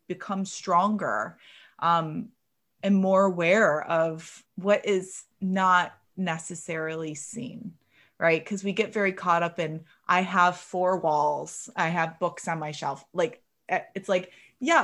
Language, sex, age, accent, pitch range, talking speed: English, female, 20-39, American, 175-220 Hz, 140 wpm